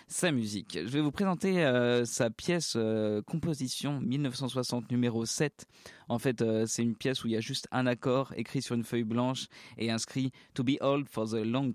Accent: French